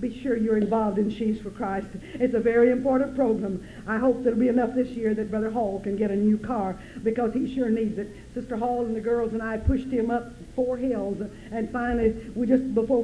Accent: American